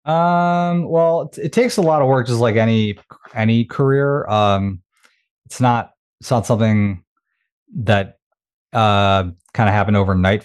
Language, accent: English, American